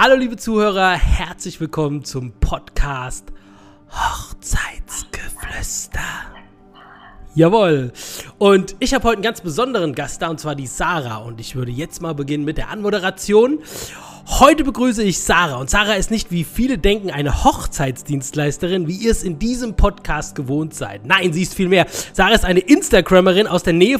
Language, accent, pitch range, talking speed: German, German, 155-215 Hz, 160 wpm